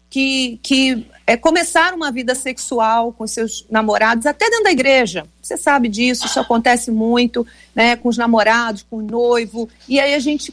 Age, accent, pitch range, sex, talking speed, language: 50-69, Brazilian, 230-285 Hz, female, 175 wpm, Portuguese